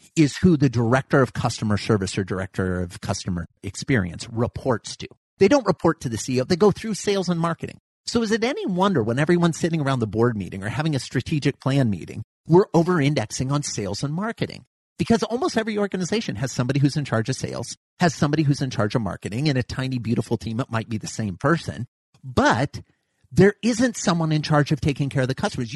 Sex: male